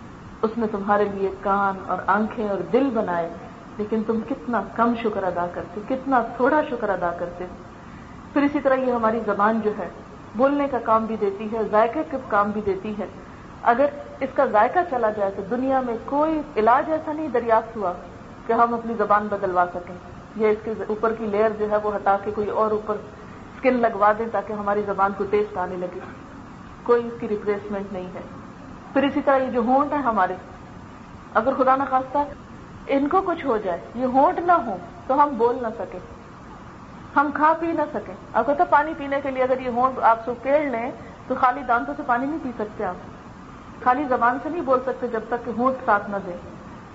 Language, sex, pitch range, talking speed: Urdu, female, 210-265 Hz, 200 wpm